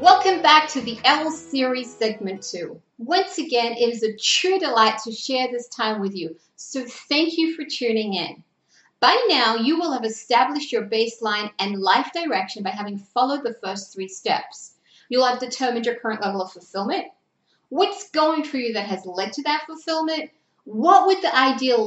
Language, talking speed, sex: English, 185 wpm, female